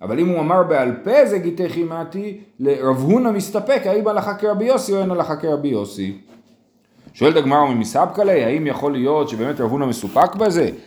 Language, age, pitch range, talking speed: Hebrew, 30-49, 125-175 Hz, 190 wpm